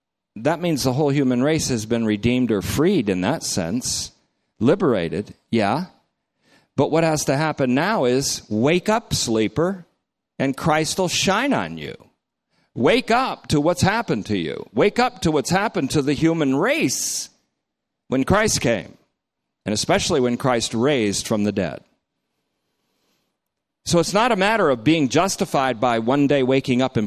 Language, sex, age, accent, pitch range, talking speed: English, male, 50-69, American, 110-150 Hz, 160 wpm